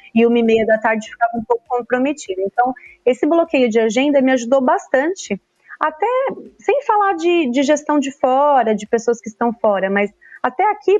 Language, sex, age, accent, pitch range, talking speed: Portuguese, female, 30-49, Brazilian, 225-310 Hz, 185 wpm